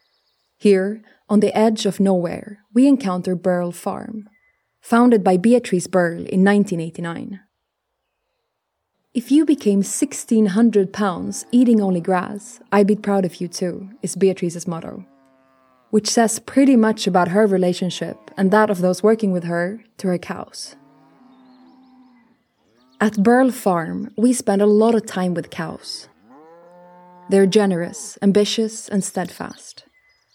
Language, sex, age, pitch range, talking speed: English, female, 20-39, 180-225 Hz, 130 wpm